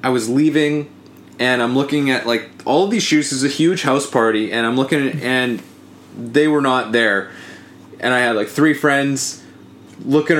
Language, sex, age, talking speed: English, male, 20-39, 180 wpm